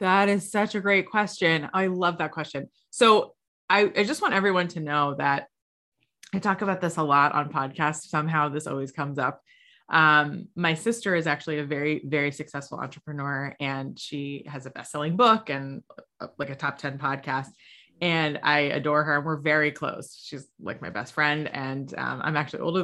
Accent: American